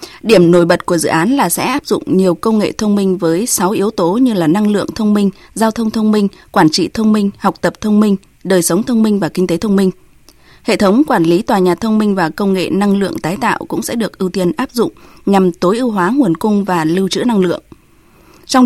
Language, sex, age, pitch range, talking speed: Vietnamese, female, 20-39, 170-220 Hz, 255 wpm